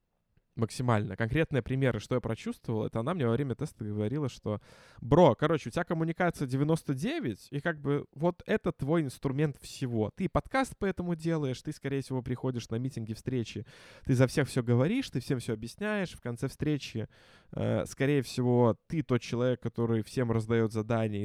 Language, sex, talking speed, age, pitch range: Russian, male, 170 wpm, 20-39, 115-145 Hz